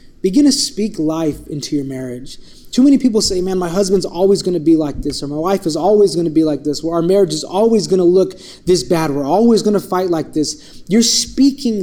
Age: 20-39